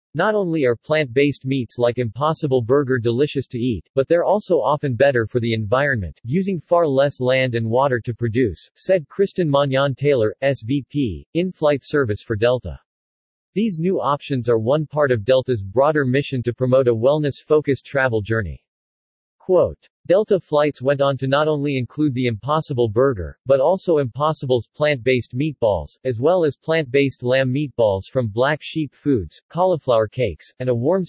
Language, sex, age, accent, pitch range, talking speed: English, male, 40-59, American, 120-150 Hz, 160 wpm